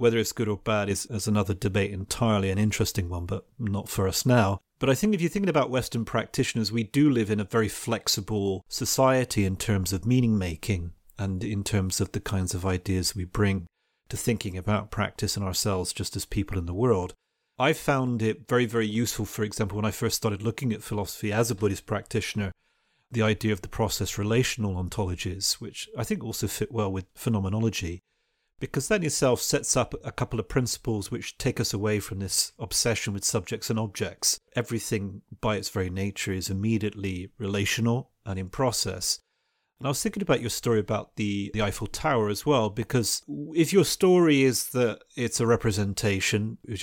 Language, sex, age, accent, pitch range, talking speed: English, male, 30-49, British, 100-120 Hz, 190 wpm